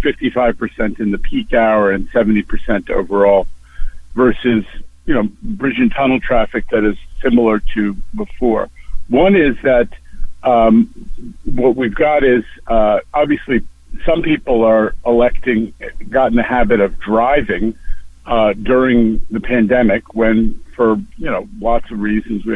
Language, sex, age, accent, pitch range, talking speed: English, male, 60-79, American, 100-125 Hz, 145 wpm